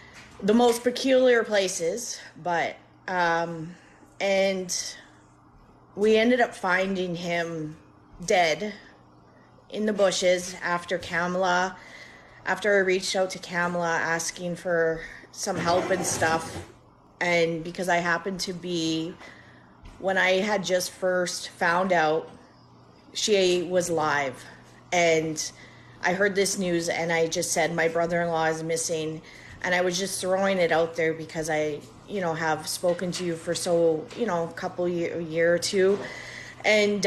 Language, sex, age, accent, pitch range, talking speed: English, female, 30-49, American, 160-185 Hz, 140 wpm